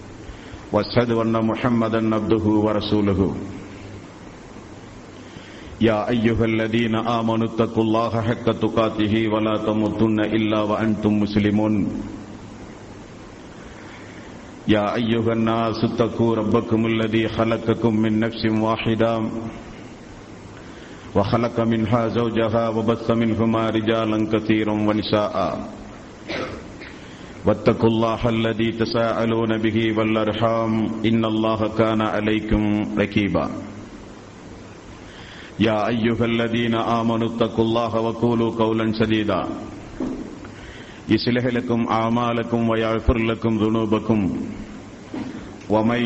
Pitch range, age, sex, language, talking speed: 110-115 Hz, 50-69, male, Tamil, 65 wpm